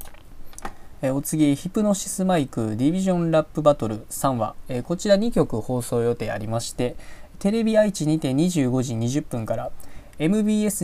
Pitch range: 120-175 Hz